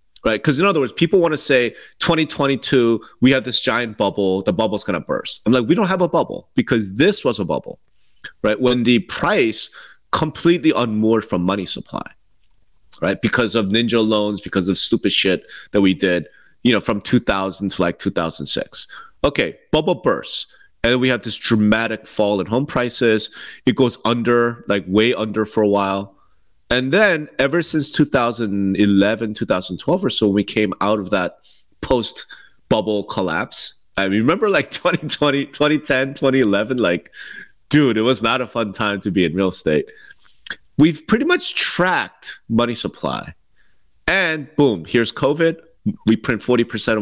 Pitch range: 100-140 Hz